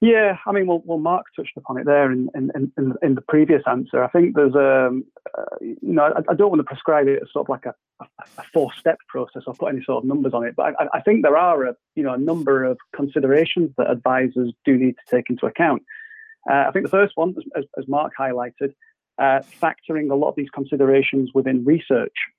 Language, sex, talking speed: English, male, 230 wpm